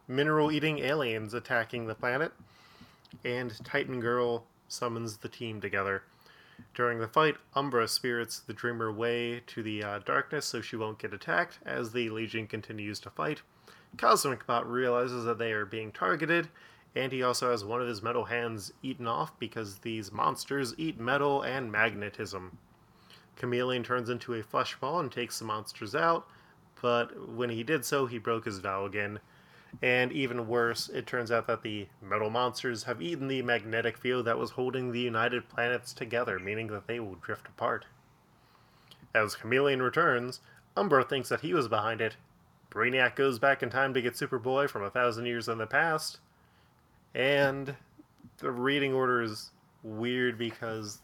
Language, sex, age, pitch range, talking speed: English, male, 20-39, 110-125 Hz, 165 wpm